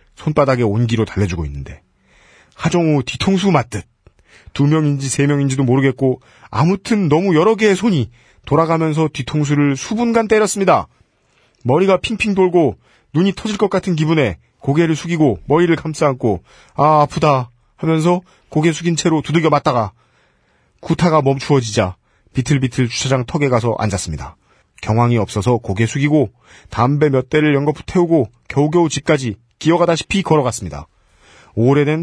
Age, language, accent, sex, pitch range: 40-59, Korean, native, male, 110-160 Hz